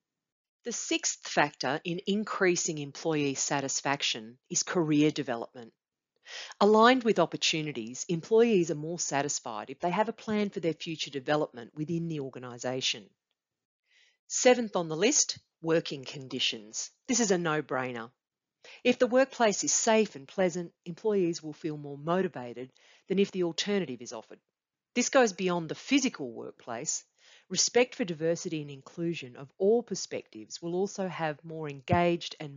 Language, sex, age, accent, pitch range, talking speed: English, female, 40-59, Australian, 145-205 Hz, 140 wpm